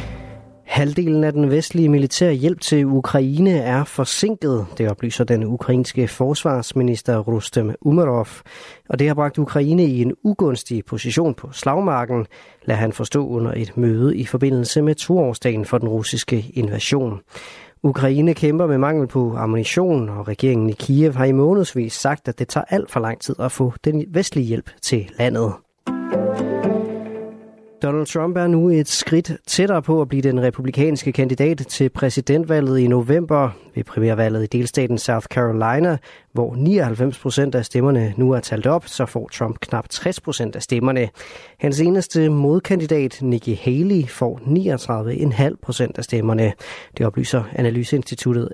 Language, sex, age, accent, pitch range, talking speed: Danish, male, 30-49, native, 120-155 Hz, 150 wpm